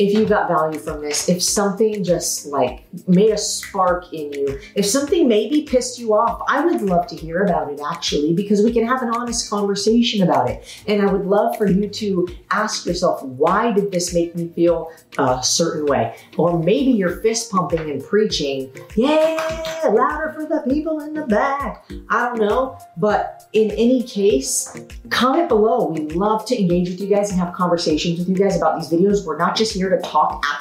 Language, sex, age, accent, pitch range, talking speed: English, female, 40-59, American, 170-230 Hz, 200 wpm